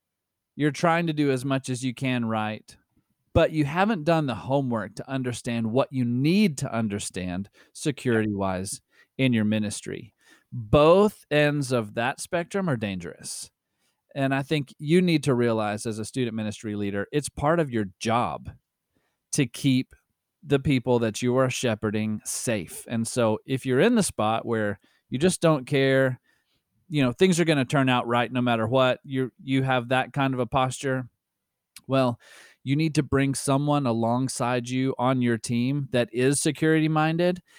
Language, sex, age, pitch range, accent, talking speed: English, male, 40-59, 110-145 Hz, American, 170 wpm